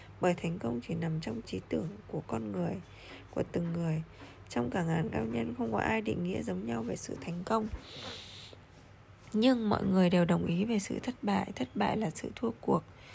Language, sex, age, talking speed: Vietnamese, female, 20-39, 210 wpm